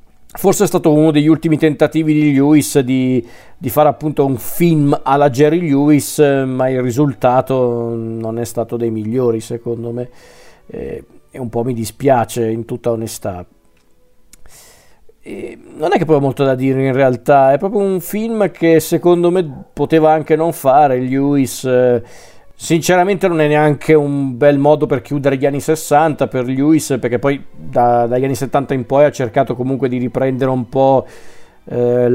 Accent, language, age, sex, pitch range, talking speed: native, Italian, 50-69, male, 125-145 Hz, 165 wpm